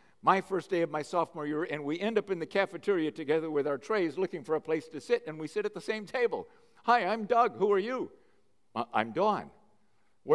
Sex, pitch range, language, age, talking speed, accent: male, 150-220 Hz, English, 60-79, 230 wpm, American